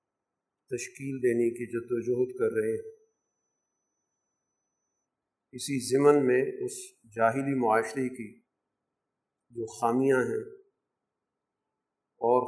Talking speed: 90 wpm